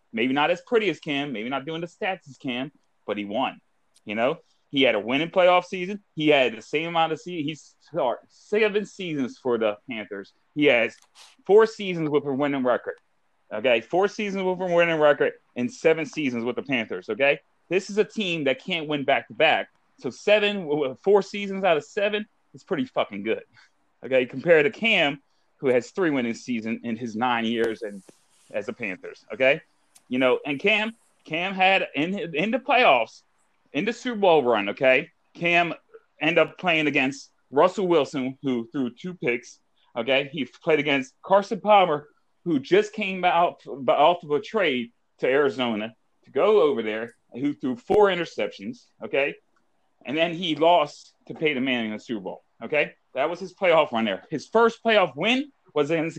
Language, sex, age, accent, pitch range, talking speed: English, male, 30-49, American, 140-205 Hz, 185 wpm